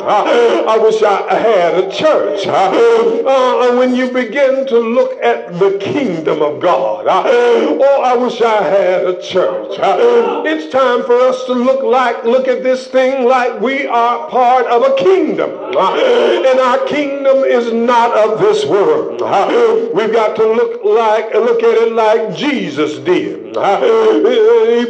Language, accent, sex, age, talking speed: English, American, male, 50-69, 150 wpm